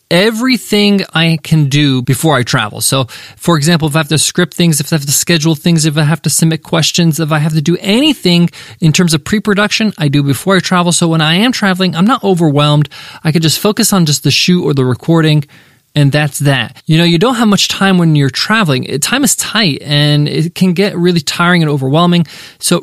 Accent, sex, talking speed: American, male, 230 wpm